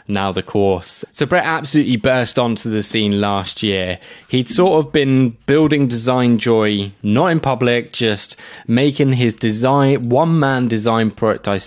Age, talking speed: 20-39, 150 wpm